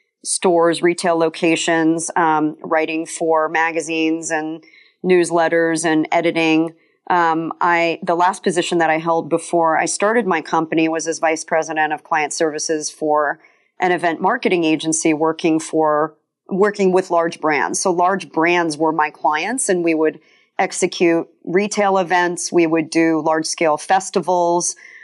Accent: American